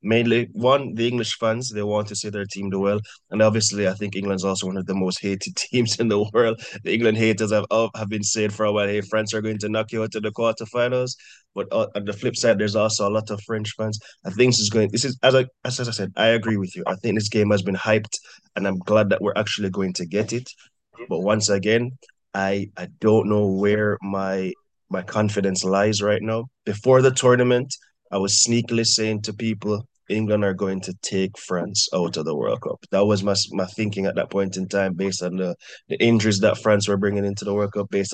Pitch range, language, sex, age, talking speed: 100-115 Hz, English, male, 20-39, 240 wpm